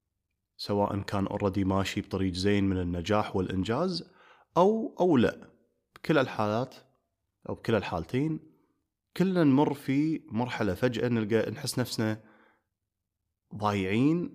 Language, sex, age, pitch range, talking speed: Arabic, male, 30-49, 95-135 Hz, 110 wpm